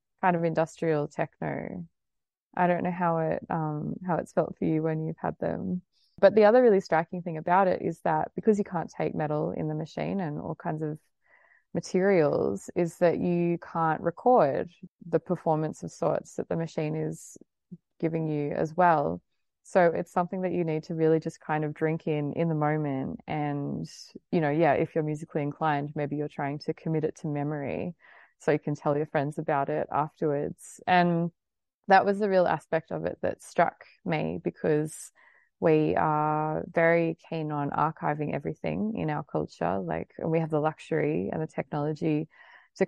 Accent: Australian